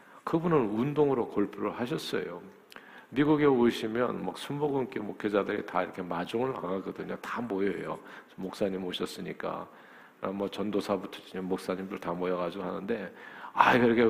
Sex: male